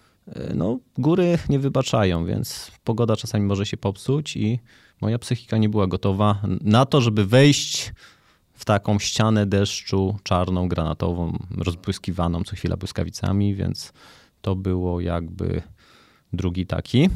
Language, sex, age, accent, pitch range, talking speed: Polish, male, 30-49, native, 95-115 Hz, 125 wpm